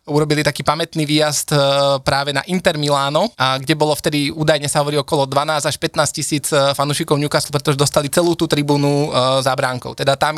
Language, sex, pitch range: Slovak, male, 140-160 Hz